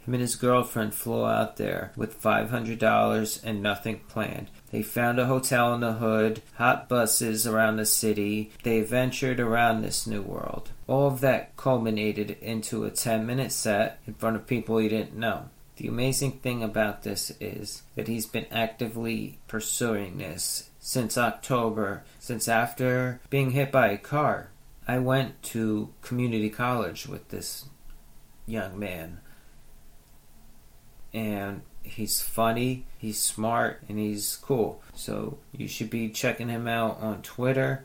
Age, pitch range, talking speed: 30-49, 110-125 Hz, 145 wpm